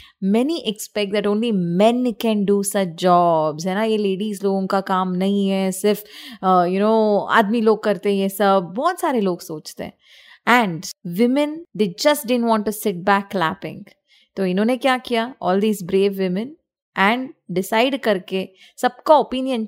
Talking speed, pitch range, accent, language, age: 170 wpm, 195-250 Hz, native, Hindi, 20-39